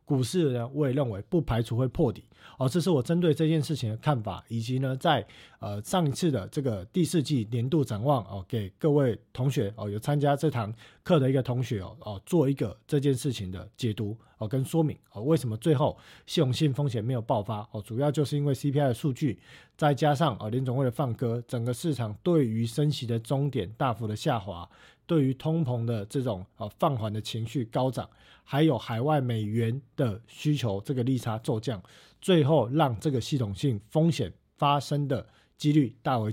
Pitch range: 115-150 Hz